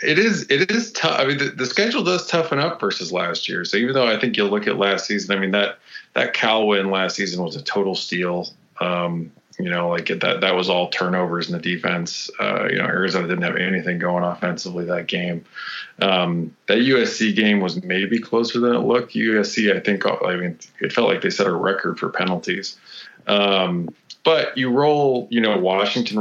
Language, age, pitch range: English, 20-39, 90-105 Hz